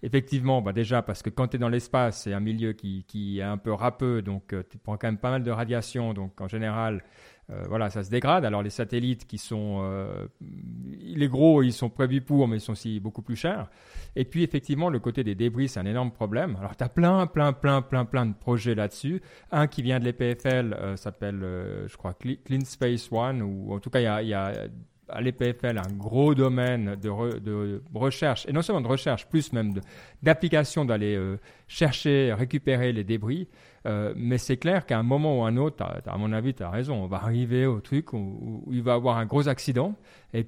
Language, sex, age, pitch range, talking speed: French, male, 30-49, 105-135 Hz, 230 wpm